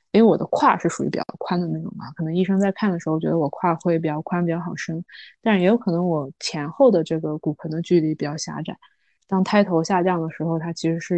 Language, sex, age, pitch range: Chinese, female, 20-39, 160-195 Hz